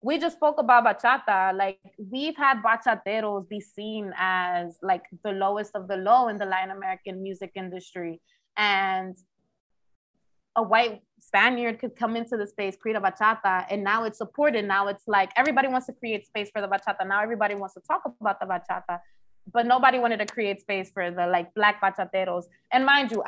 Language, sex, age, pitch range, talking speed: English, female, 20-39, 200-255 Hz, 190 wpm